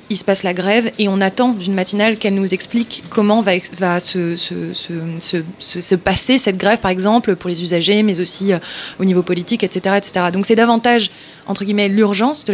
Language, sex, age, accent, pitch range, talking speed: French, female, 20-39, French, 195-230 Hz, 220 wpm